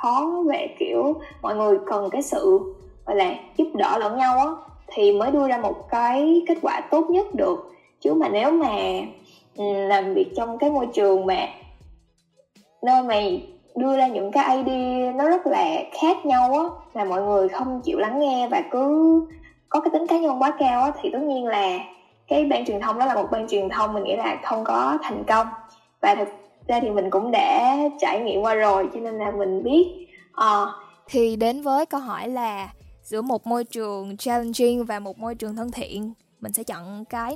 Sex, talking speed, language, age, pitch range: female, 200 wpm, Vietnamese, 10-29, 205-280 Hz